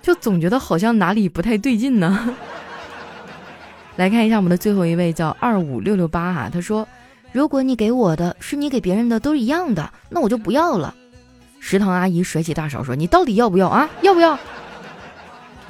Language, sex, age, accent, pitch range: Chinese, female, 20-39, native, 175-240 Hz